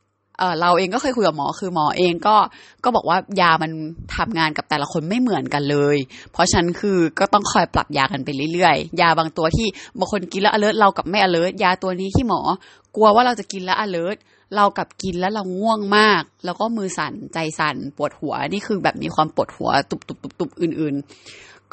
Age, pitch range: 20-39, 160-205 Hz